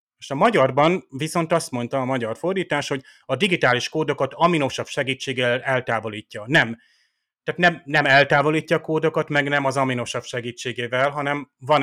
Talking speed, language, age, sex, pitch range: 150 wpm, Hungarian, 30-49, male, 120-155 Hz